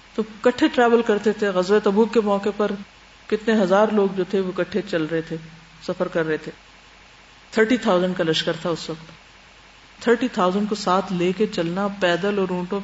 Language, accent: English, Indian